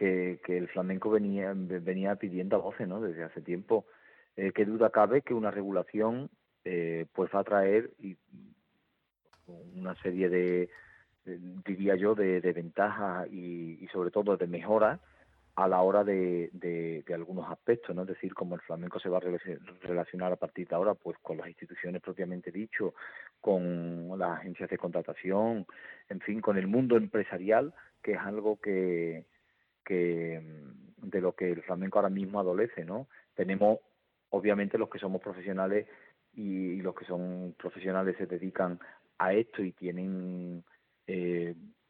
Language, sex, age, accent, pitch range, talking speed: Spanish, male, 40-59, Spanish, 90-105 Hz, 160 wpm